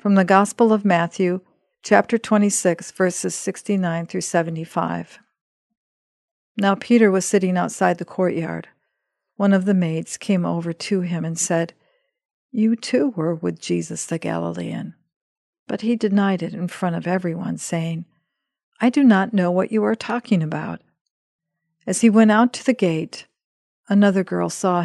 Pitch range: 170-215 Hz